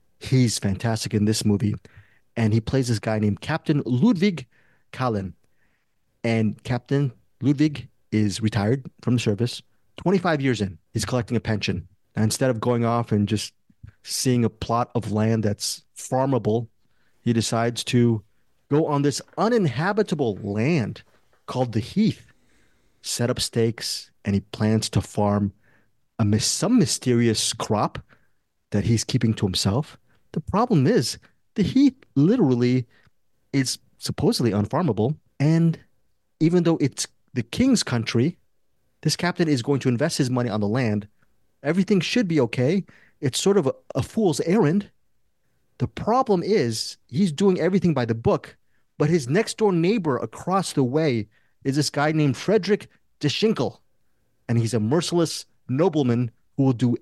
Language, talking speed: English, 150 wpm